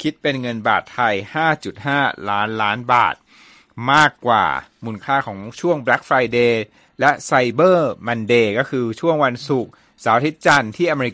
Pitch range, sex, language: 105-140 Hz, male, Thai